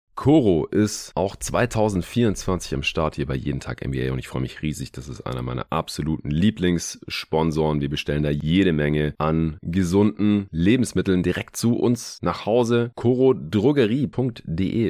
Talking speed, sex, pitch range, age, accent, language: 145 wpm, male, 75-100 Hz, 30-49, German, German